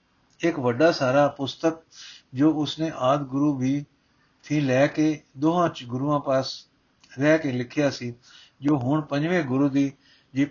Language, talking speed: Punjabi, 150 wpm